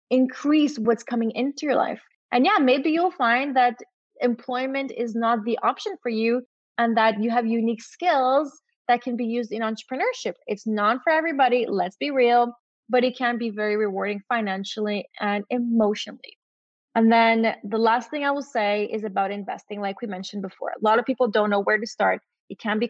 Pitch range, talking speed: 210-250 Hz, 195 wpm